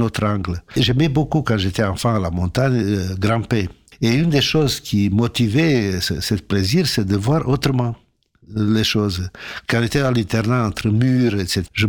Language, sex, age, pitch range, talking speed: French, male, 60-79, 100-130 Hz, 170 wpm